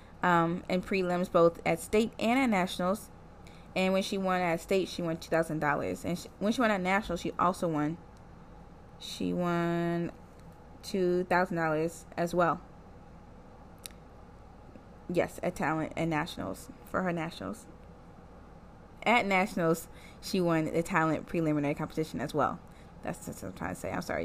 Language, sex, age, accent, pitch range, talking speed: English, female, 20-39, American, 160-210 Hz, 145 wpm